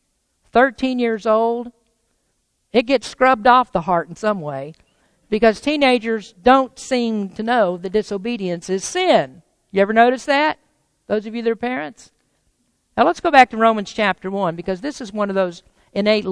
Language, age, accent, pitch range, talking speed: English, 50-69, American, 200-255 Hz, 175 wpm